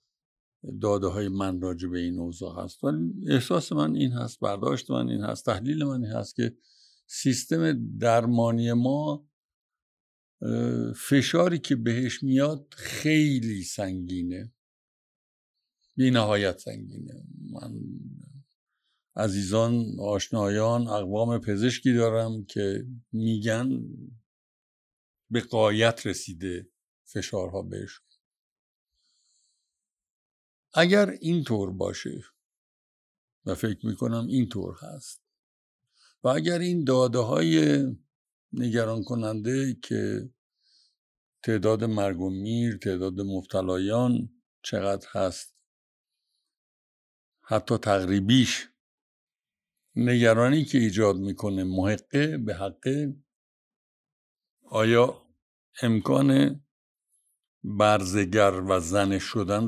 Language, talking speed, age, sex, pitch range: Persian, 85 wpm, 60-79, male, 100-130 Hz